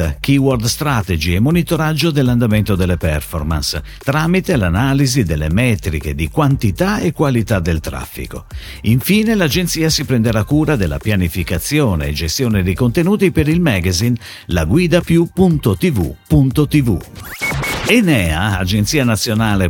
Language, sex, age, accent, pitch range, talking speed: Italian, male, 50-69, native, 90-140 Hz, 105 wpm